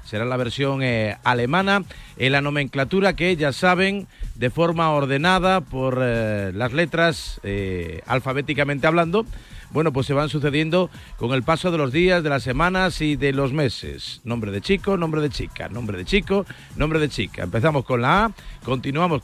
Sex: male